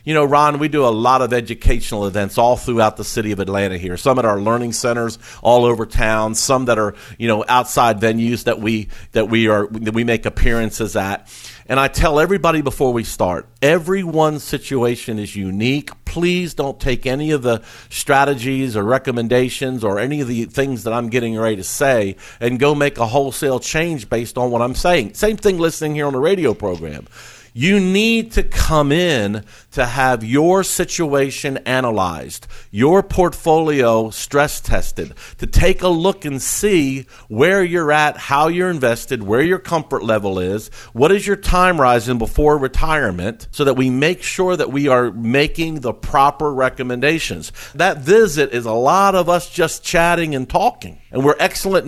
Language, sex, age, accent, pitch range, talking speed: English, male, 50-69, American, 115-160 Hz, 180 wpm